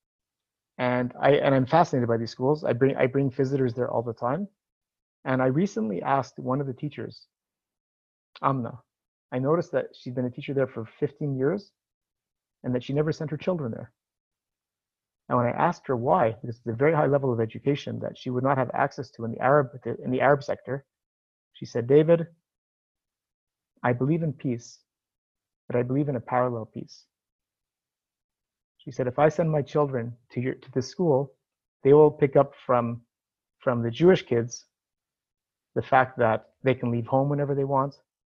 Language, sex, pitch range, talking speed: English, male, 120-145 Hz, 185 wpm